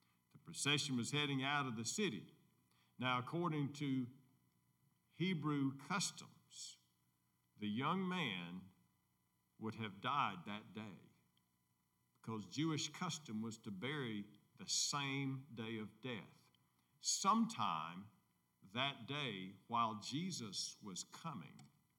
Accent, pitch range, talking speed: American, 110-155 Hz, 105 wpm